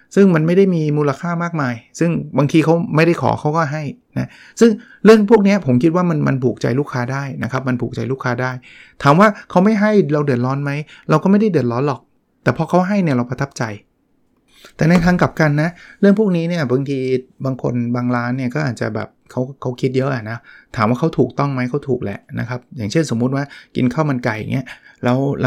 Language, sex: Thai, male